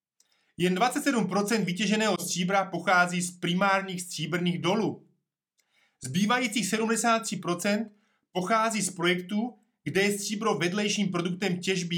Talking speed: 100 wpm